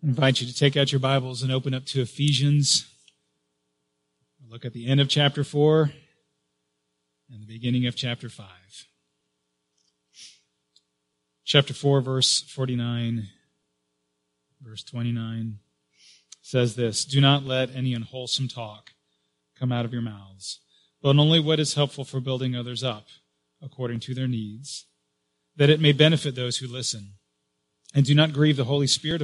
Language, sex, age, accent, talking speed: English, male, 30-49, American, 150 wpm